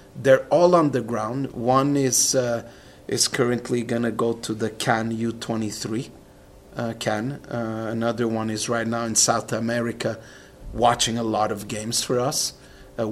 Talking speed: 160 wpm